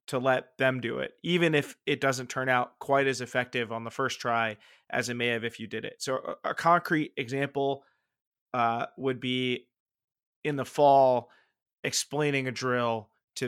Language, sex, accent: English, male, American